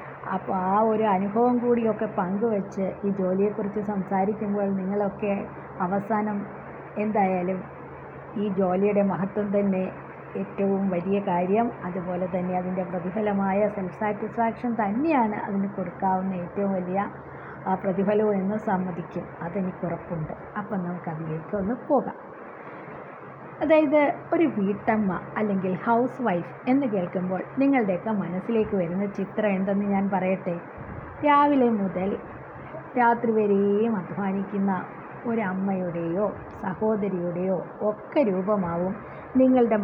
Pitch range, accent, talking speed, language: 190-220 Hz, native, 95 wpm, Malayalam